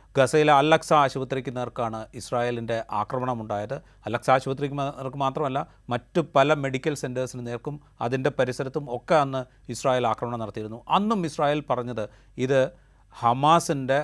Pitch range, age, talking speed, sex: 115-140 Hz, 30-49, 115 wpm, male